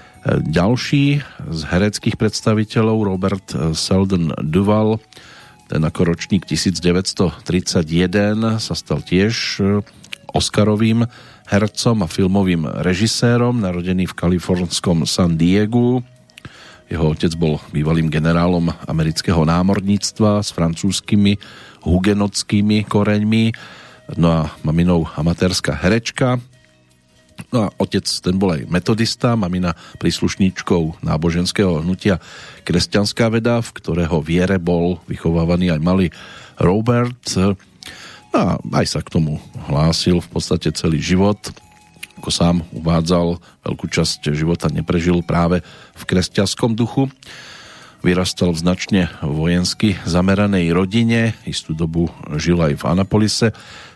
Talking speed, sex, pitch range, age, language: 105 wpm, male, 85-105 Hz, 40-59, Slovak